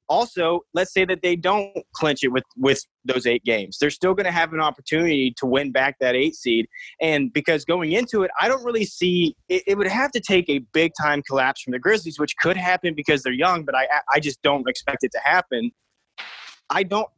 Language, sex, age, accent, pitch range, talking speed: English, male, 20-39, American, 140-185 Hz, 225 wpm